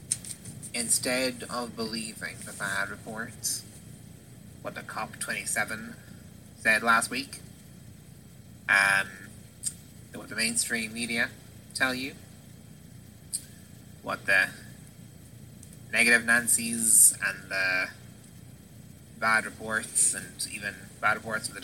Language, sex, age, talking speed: English, male, 20-39, 95 wpm